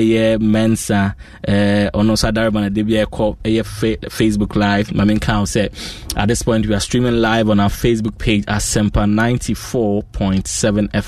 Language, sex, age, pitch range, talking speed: English, male, 20-39, 105-120 Hz, 140 wpm